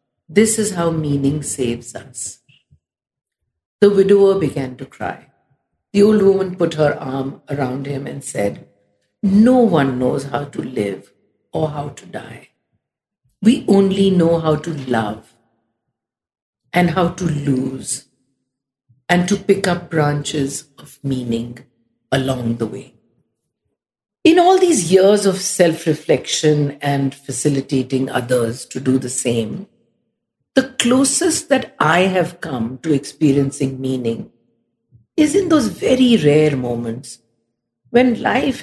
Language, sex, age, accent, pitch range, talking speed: English, female, 50-69, Indian, 130-195 Hz, 125 wpm